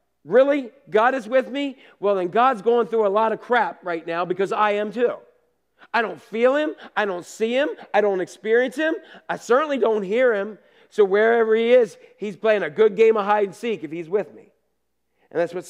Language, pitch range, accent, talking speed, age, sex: English, 145-220 Hz, American, 220 wpm, 40-59, male